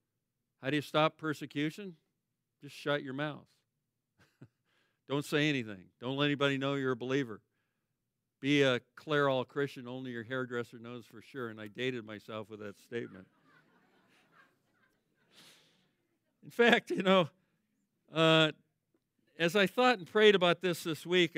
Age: 50-69